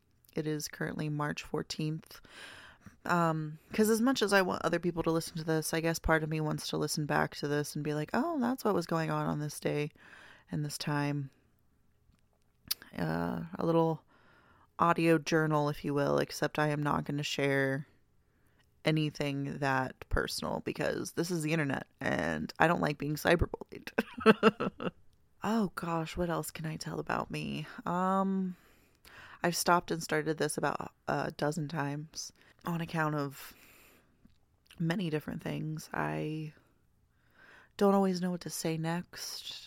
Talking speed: 160 wpm